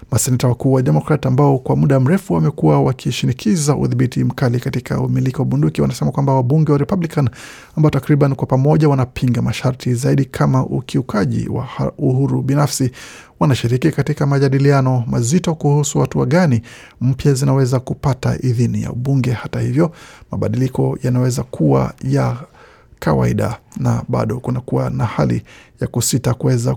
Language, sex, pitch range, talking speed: Swahili, male, 120-140 Hz, 140 wpm